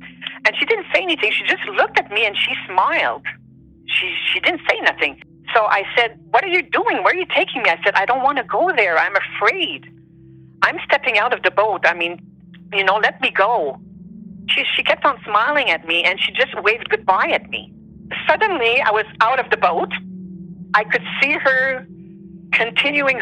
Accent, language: American, English